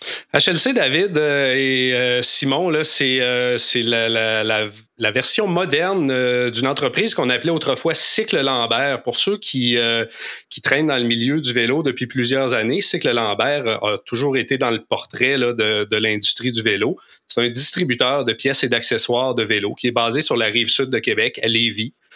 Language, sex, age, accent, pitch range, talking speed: French, male, 30-49, Canadian, 115-140 Hz, 190 wpm